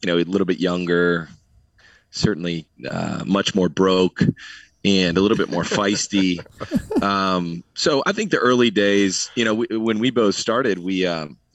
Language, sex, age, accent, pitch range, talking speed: English, male, 20-39, American, 85-100 Hz, 165 wpm